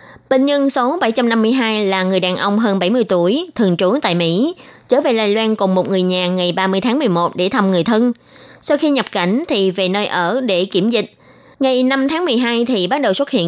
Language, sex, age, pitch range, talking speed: Vietnamese, female, 20-39, 190-260 Hz, 225 wpm